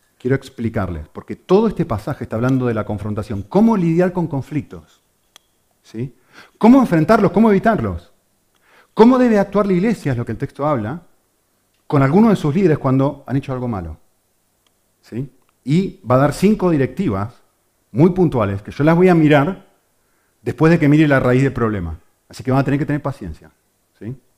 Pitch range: 110-160 Hz